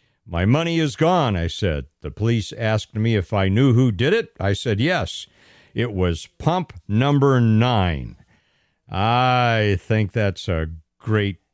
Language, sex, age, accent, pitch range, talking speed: English, male, 60-79, American, 95-125 Hz, 150 wpm